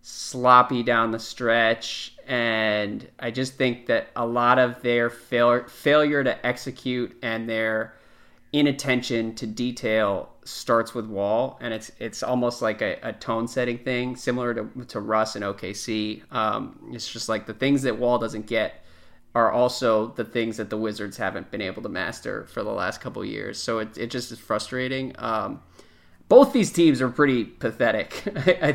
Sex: male